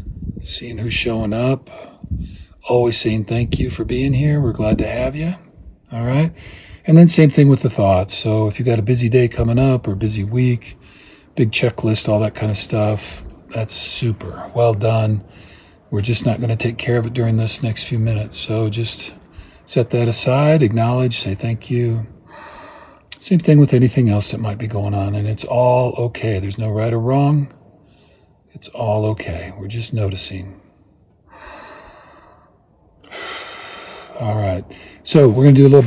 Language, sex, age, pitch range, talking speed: English, male, 40-59, 105-140 Hz, 175 wpm